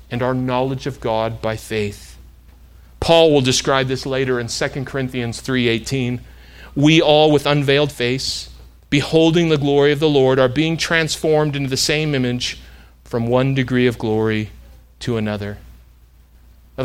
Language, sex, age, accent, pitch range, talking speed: English, male, 40-59, American, 110-155 Hz, 150 wpm